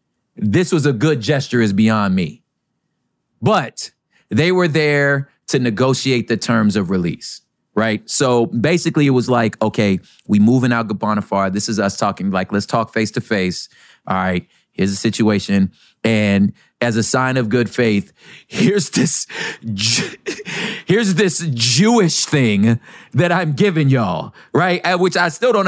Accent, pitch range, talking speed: American, 105-145 Hz, 155 wpm